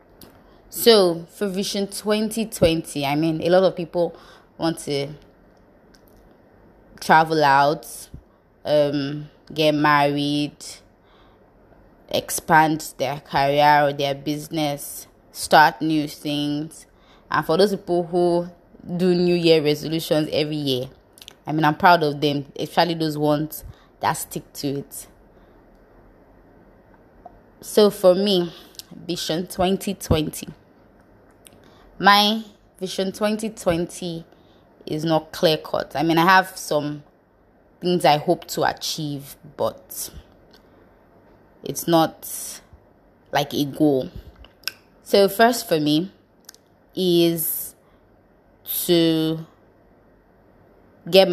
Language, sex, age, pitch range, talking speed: English, female, 20-39, 145-175 Hz, 100 wpm